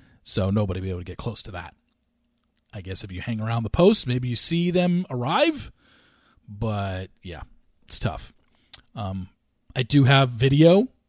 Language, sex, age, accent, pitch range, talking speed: English, male, 40-59, American, 100-155 Hz, 170 wpm